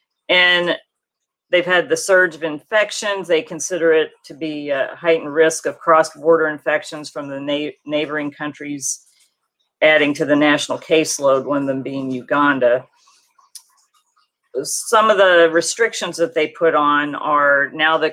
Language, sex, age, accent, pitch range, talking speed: English, female, 40-59, American, 145-175 Hz, 140 wpm